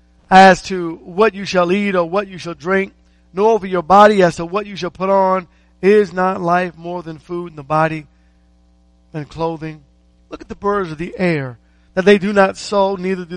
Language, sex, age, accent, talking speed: English, male, 50-69, American, 210 wpm